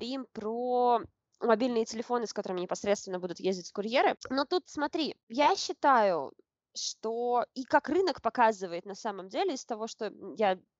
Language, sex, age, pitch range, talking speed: Russian, female, 20-39, 215-260 Hz, 145 wpm